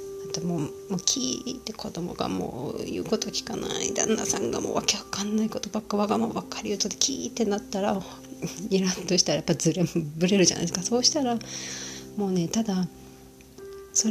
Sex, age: female, 40-59